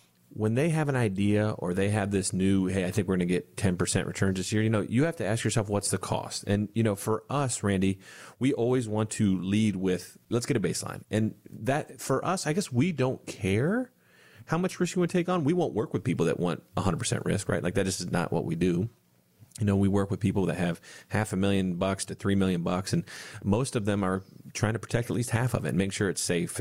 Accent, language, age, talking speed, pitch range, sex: American, English, 30-49, 260 wpm, 95-120 Hz, male